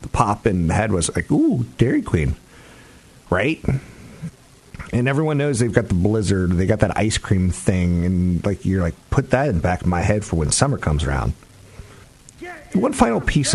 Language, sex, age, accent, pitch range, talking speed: English, male, 40-59, American, 85-110 Hz, 190 wpm